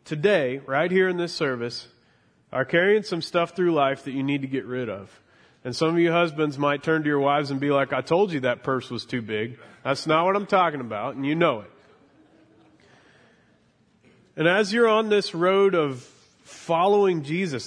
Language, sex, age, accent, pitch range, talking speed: English, male, 30-49, American, 130-160 Hz, 200 wpm